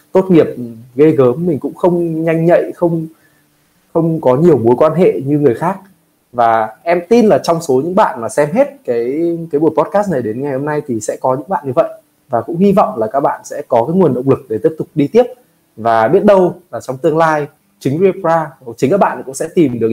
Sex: male